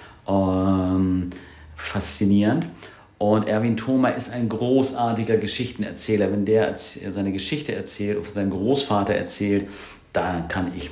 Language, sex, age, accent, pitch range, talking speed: German, male, 50-69, German, 90-110 Hz, 115 wpm